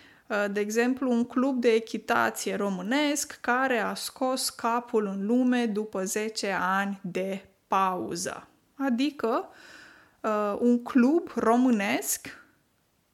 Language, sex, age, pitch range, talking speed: Romanian, female, 20-39, 200-245 Hz, 100 wpm